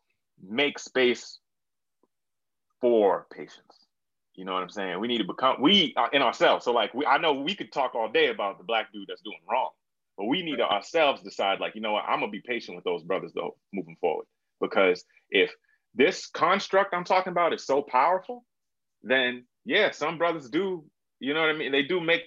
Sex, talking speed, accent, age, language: male, 205 wpm, American, 30-49, English